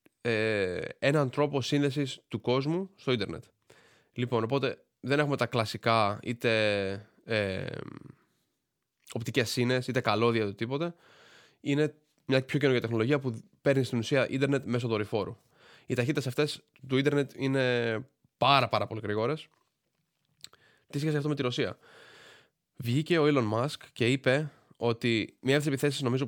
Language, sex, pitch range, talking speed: Greek, male, 115-140 Hz, 140 wpm